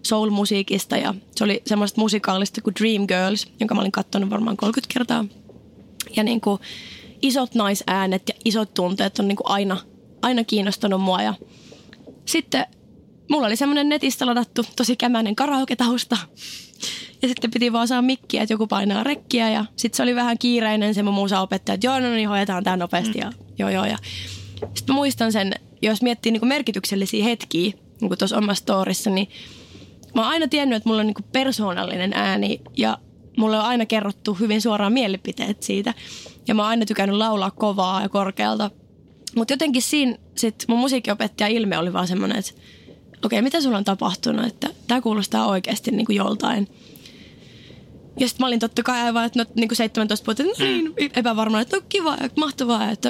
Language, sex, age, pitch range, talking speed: Finnish, female, 20-39, 205-245 Hz, 170 wpm